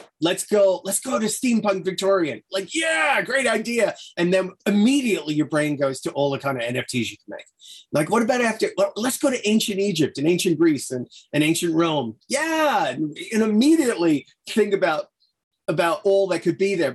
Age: 30-49